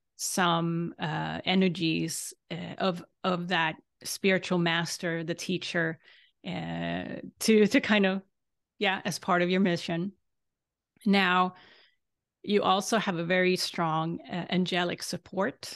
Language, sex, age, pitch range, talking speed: English, female, 30-49, 170-190 Hz, 120 wpm